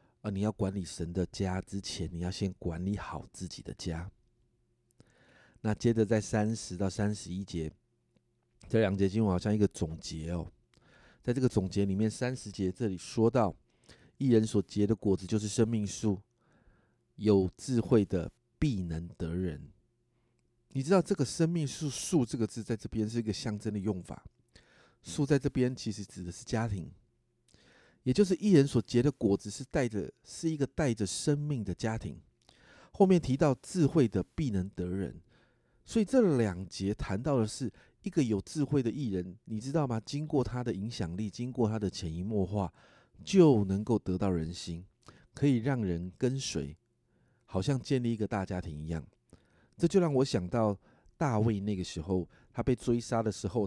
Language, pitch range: Chinese, 95-125 Hz